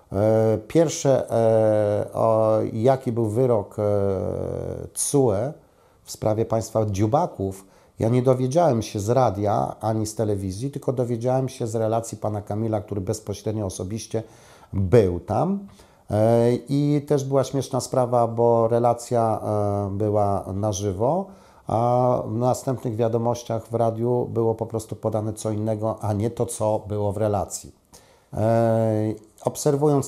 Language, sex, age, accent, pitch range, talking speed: Polish, male, 50-69, native, 100-120 Hz, 130 wpm